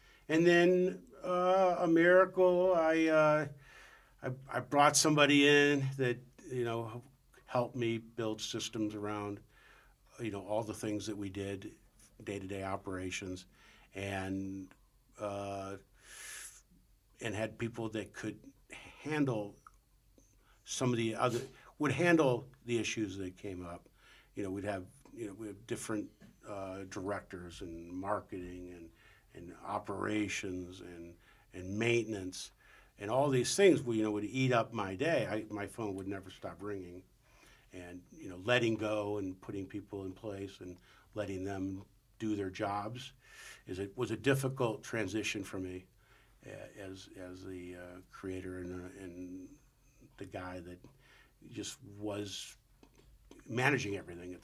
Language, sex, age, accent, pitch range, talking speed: English, male, 50-69, American, 95-125 Hz, 140 wpm